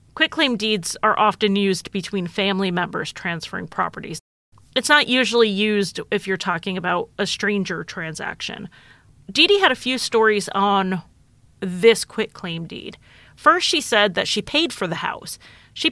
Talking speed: 155 wpm